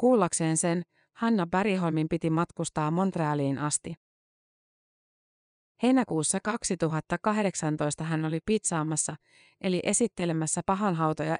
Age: 30-49